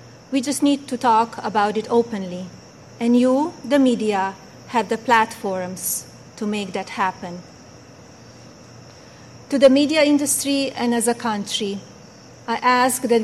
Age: 30-49